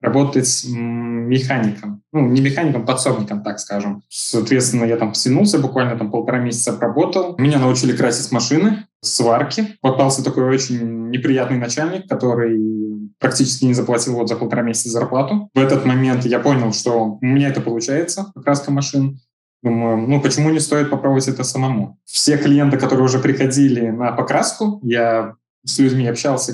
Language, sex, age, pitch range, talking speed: Russian, male, 20-39, 120-145 Hz, 155 wpm